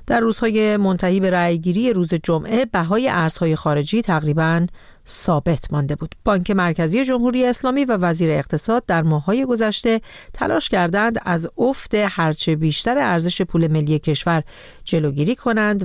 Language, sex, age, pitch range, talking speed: Persian, female, 40-59, 155-210 Hz, 135 wpm